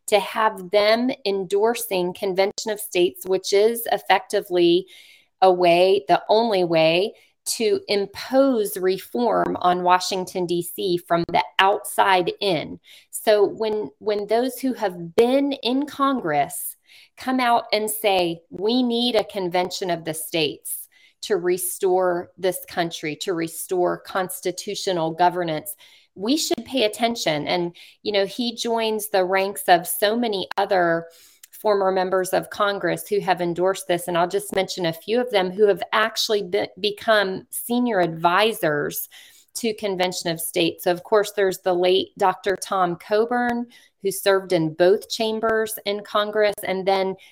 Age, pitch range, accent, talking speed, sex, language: 40-59, 180-215 Hz, American, 145 wpm, female, English